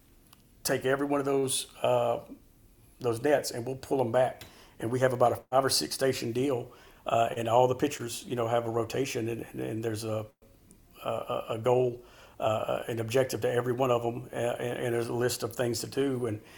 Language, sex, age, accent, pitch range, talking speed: English, male, 50-69, American, 115-125 Hz, 210 wpm